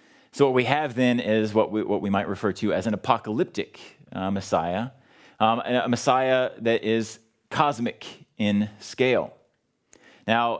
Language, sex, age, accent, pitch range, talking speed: Dutch, male, 30-49, American, 105-140 Hz, 160 wpm